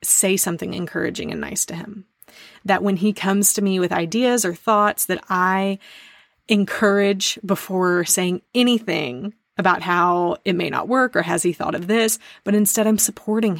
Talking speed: 170 wpm